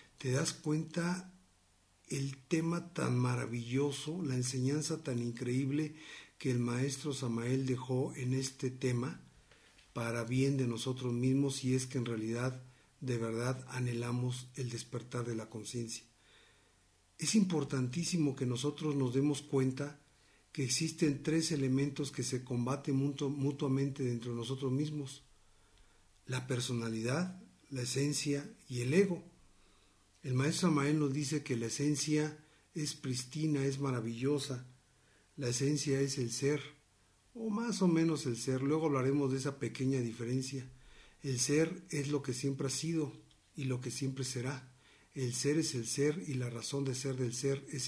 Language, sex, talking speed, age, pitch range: Spanish, male, 150 wpm, 50-69, 125-145 Hz